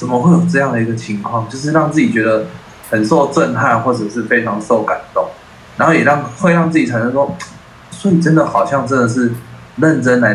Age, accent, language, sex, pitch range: 20-39, native, Chinese, male, 110-135 Hz